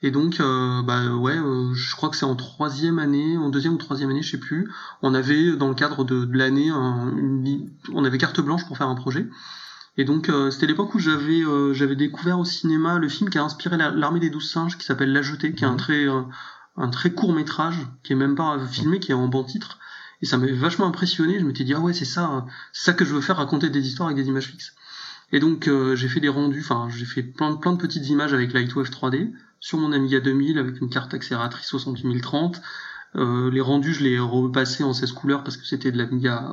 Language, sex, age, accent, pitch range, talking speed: French, male, 20-39, French, 130-160 Hz, 245 wpm